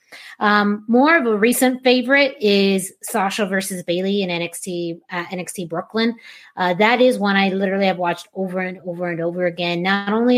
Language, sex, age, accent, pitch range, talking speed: English, female, 30-49, American, 175-215 Hz, 180 wpm